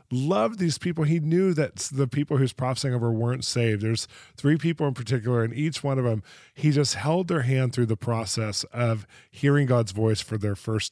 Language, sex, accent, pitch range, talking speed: English, male, American, 110-135 Hz, 215 wpm